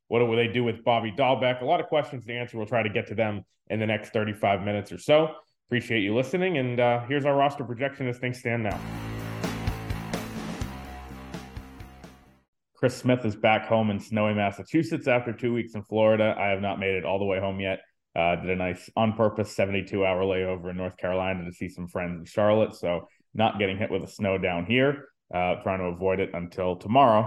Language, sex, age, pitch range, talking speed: English, male, 20-39, 95-115 Hz, 205 wpm